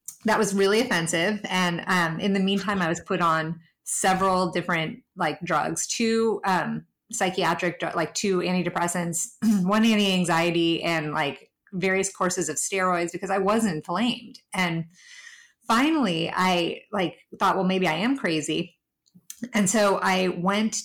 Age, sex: 30-49, female